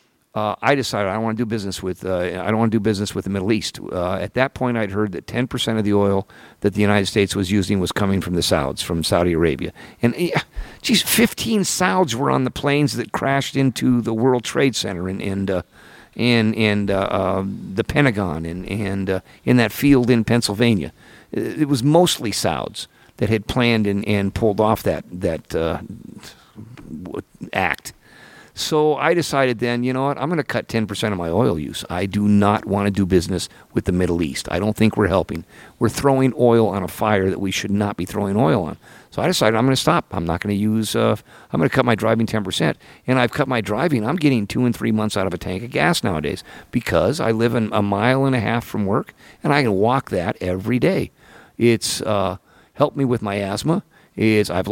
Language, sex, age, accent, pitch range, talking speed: English, male, 50-69, American, 95-125 Hz, 220 wpm